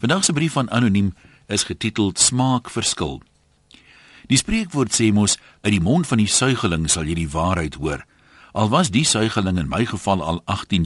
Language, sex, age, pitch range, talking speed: Dutch, male, 60-79, 80-125 Hz, 170 wpm